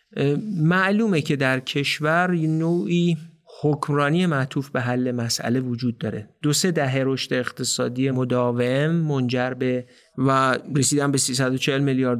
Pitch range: 125-155 Hz